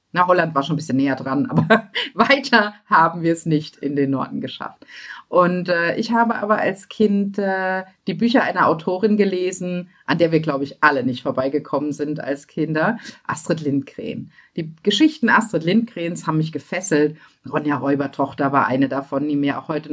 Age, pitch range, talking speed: 50-69, 155-220 Hz, 180 wpm